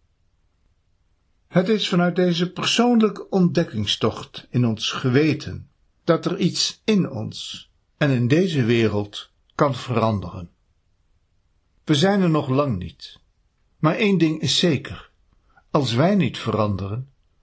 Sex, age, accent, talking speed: male, 60-79, Dutch, 120 wpm